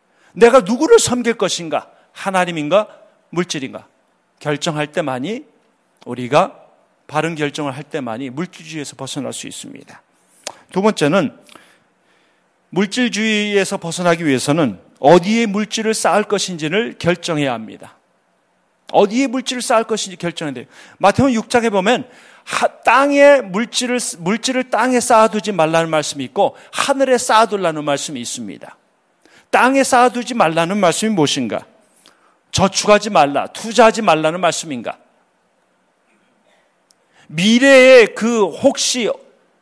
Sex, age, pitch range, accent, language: male, 40-59, 160-245 Hz, native, Korean